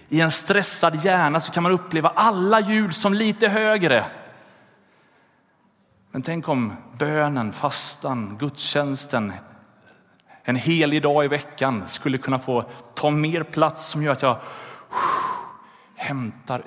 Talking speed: 125 wpm